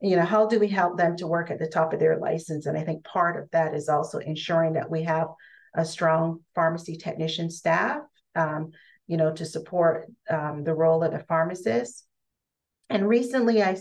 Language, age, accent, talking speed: English, 40-59, American, 200 wpm